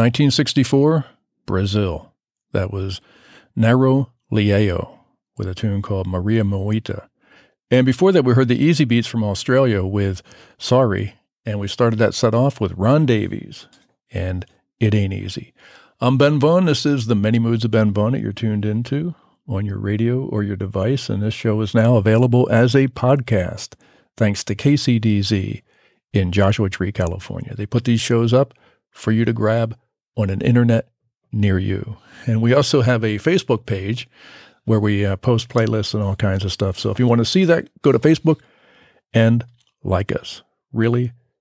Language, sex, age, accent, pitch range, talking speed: English, male, 50-69, American, 100-125 Hz, 175 wpm